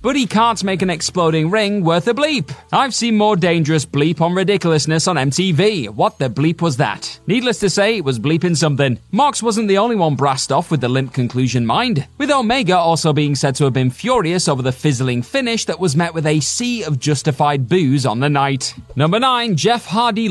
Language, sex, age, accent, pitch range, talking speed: English, male, 30-49, British, 140-200 Hz, 215 wpm